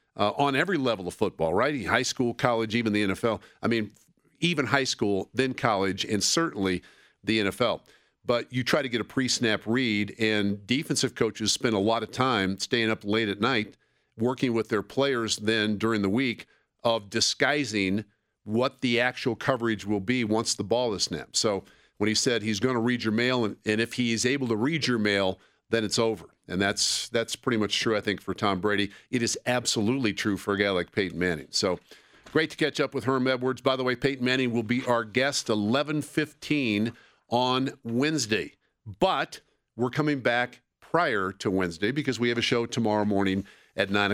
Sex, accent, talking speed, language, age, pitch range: male, American, 195 wpm, English, 50-69, 105-130 Hz